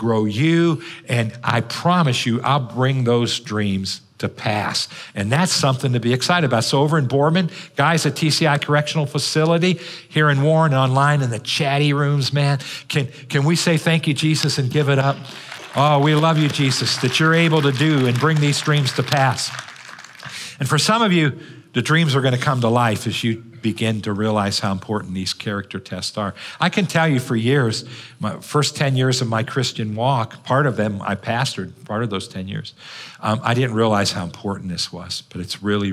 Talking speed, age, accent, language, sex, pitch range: 205 wpm, 50-69, American, English, male, 105-145 Hz